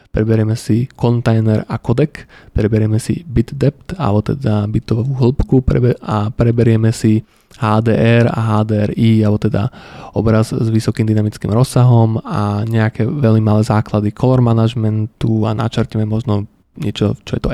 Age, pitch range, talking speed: 20-39, 110-120 Hz, 135 wpm